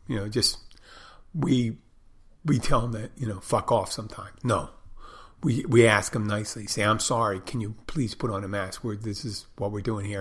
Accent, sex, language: American, male, English